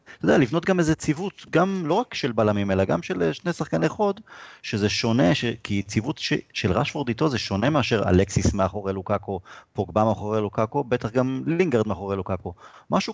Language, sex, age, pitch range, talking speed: Hebrew, male, 30-49, 105-165 Hz, 185 wpm